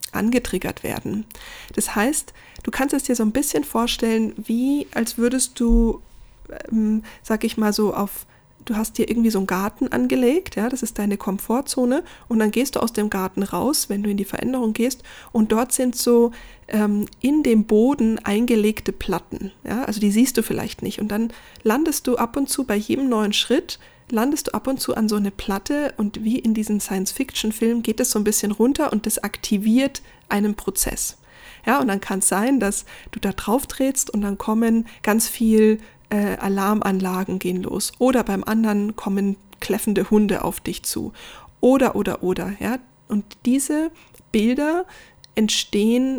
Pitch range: 205-250 Hz